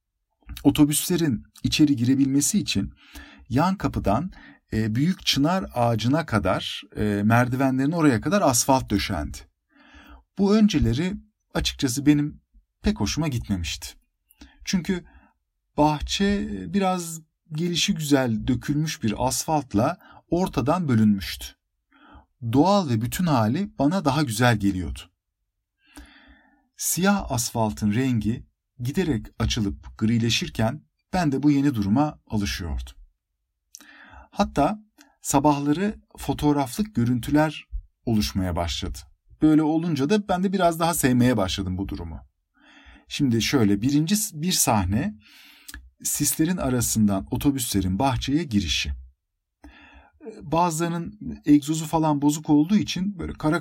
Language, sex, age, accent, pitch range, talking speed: Turkish, male, 50-69, native, 100-160 Hz, 95 wpm